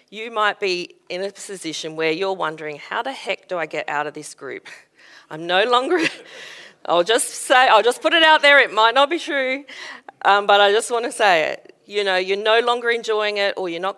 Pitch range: 165-235 Hz